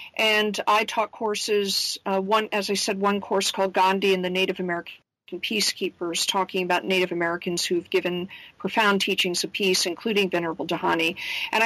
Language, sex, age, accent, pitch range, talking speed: English, female, 50-69, American, 180-210 Hz, 165 wpm